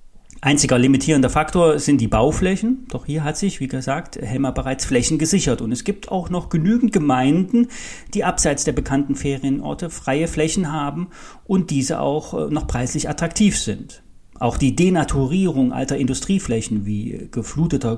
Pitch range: 135-195 Hz